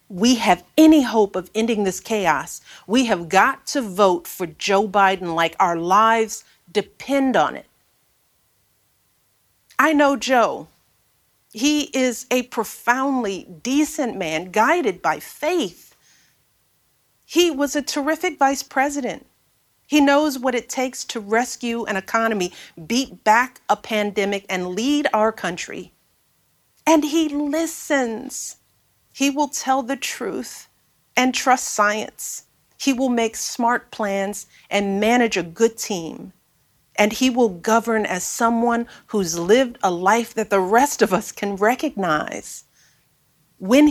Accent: American